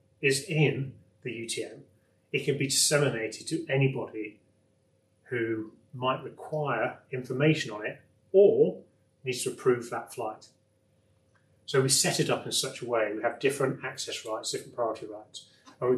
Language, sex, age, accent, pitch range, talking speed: English, male, 30-49, British, 110-135 Hz, 155 wpm